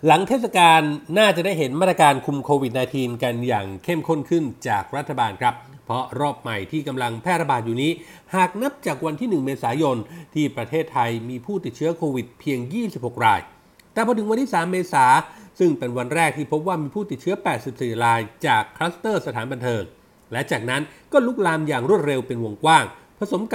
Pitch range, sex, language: 130-180 Hz, male, Thai